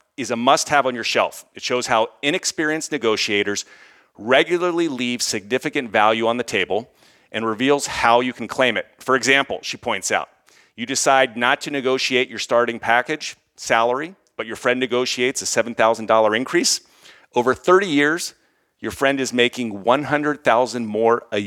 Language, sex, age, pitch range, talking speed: English, male, 40-59, 115-145 Hz, 155 wpm